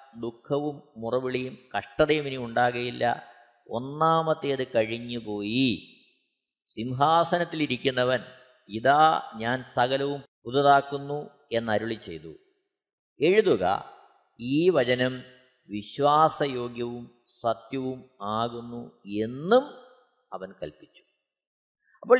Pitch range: 110-180 Hz